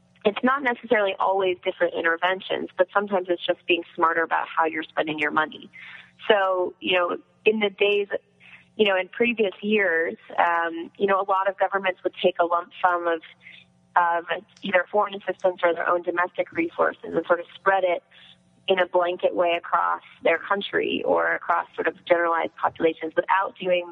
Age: 20-39